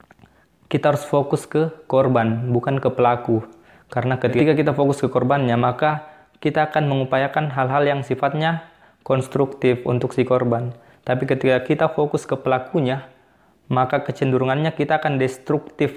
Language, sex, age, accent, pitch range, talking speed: Indonesian, male, 20-39, native, 120-140 Hz, 135 wpm